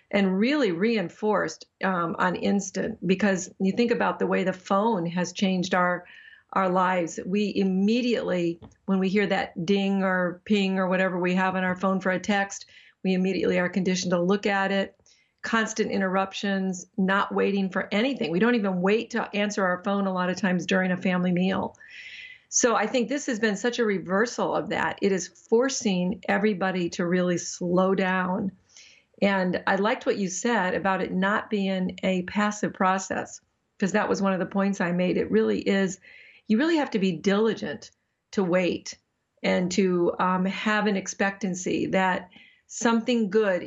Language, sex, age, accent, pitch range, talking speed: English, female, 50-69, American, 185-215 Hz, 175 wpm